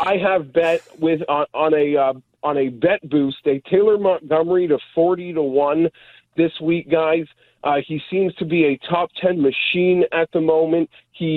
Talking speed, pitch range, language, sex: 185 wpm, 140-170 Hz, English, male